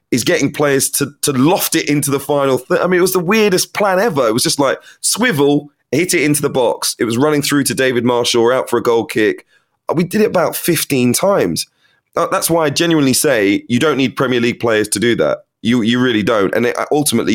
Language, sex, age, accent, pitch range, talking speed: English, male, 20-39, British, 110-145 Hz, 240 wpm